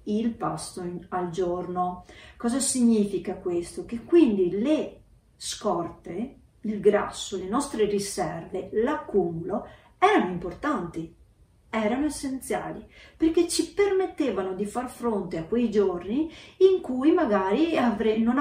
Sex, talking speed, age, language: female, 110 wpm, 40-59, Italian